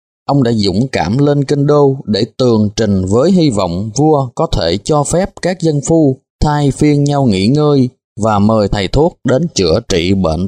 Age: 20-39